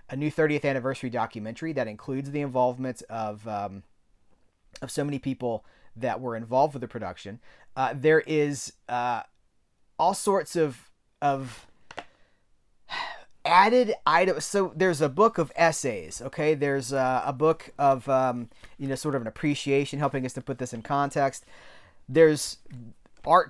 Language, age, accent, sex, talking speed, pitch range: English, 30-49, American, male, 150 wpm, 130-165 Hz